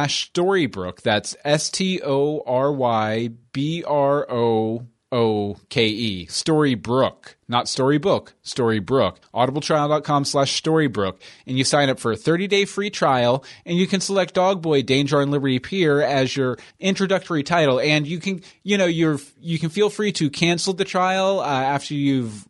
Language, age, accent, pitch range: English, 30-49, American, 120-165 Hz